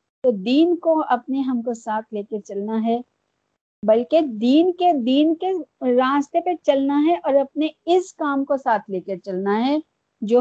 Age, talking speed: 50-69, 175 wpm